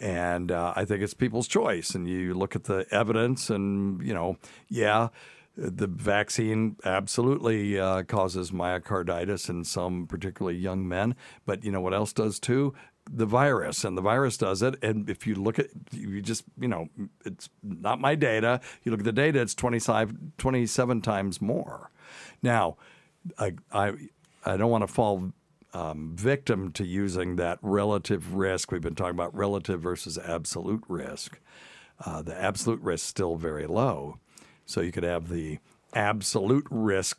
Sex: male